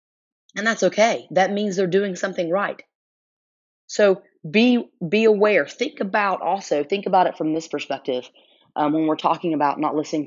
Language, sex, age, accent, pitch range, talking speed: English, female, 30-49, American, 160-200 Hz, 170 wpm